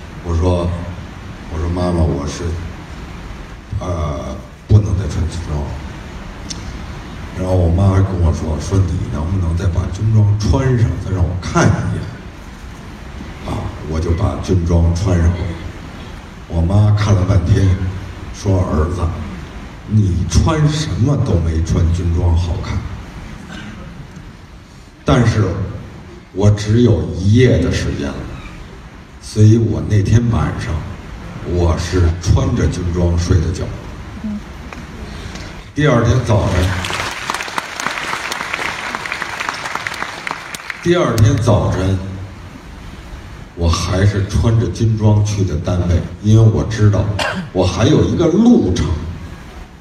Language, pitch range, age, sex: Chinese, 85-100 Hz, 60-79, male